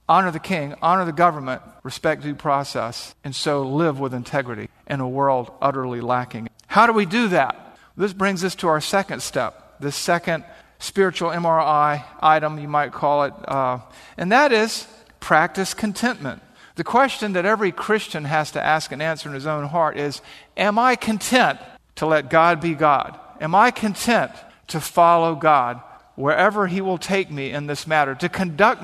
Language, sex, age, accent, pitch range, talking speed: English, male, 50-69, American, 145-190 Hz, 175 wpm